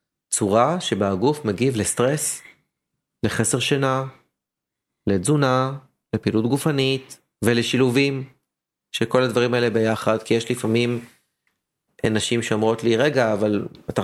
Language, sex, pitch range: Hebrew, male, 110-140 Hz